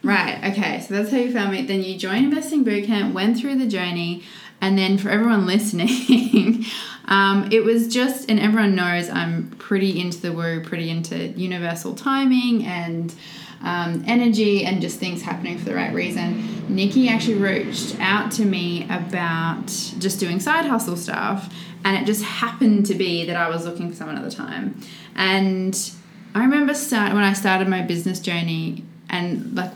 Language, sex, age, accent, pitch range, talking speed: English, female, 20-39, Australian, 185-230 Hz, 175 wpm